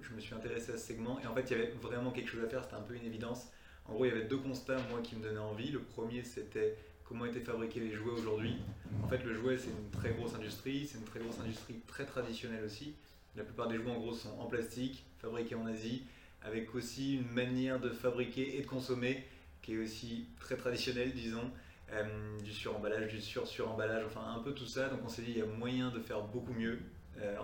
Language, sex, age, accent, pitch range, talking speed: French, male, 20-39, French, 110-125 Hz, 245 wpm